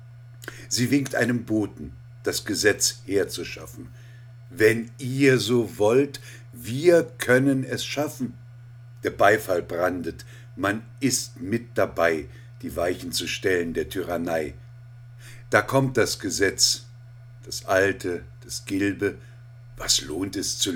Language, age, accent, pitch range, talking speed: German, 50-69, German, 115-125 Hz, 115 wpm